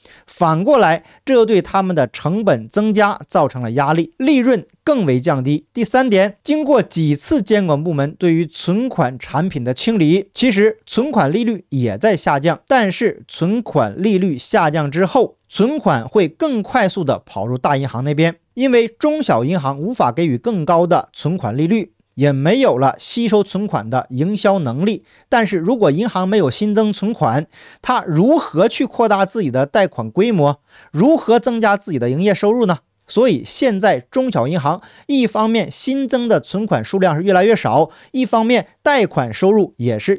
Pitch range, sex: 150-225 Hz, male